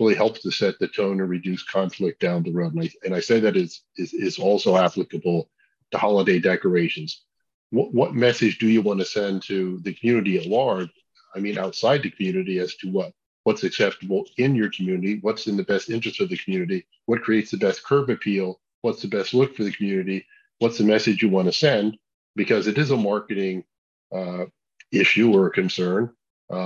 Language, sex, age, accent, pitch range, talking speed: English, male, 40-59, American, 95-120 Hz, 200 wpm